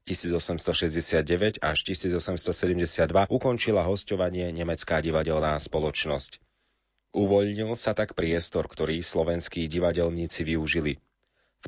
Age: 30-49